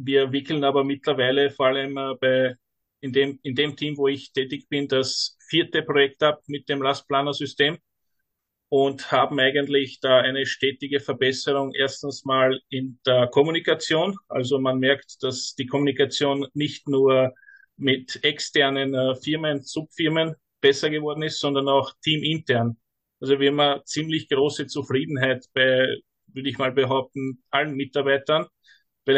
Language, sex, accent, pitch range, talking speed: German, male, Austrian, 130-150 Hz, 140 wpm